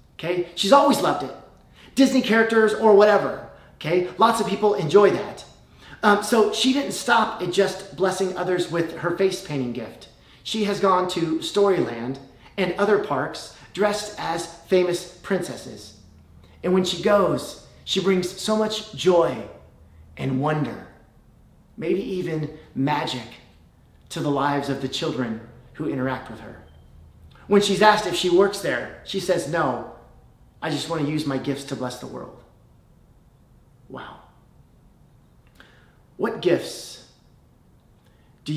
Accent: American